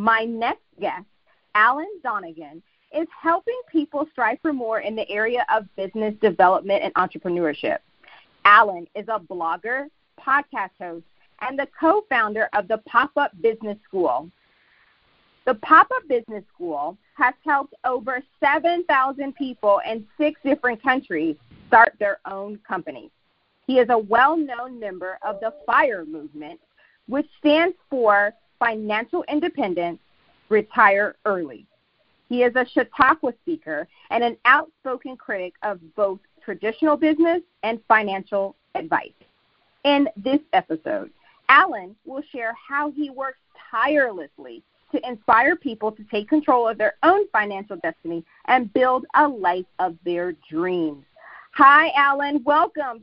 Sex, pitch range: female, 210-295 Hz